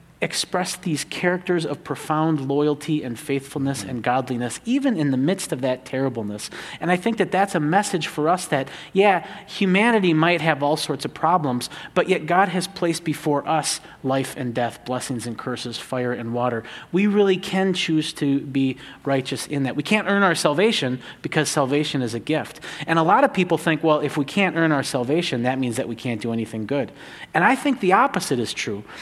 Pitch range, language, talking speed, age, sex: 125-180 Hz, English, 205 wpm, 30-49, male